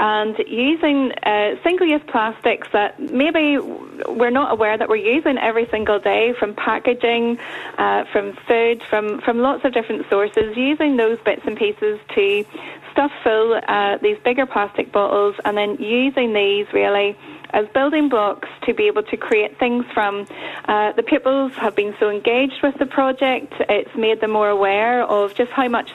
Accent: British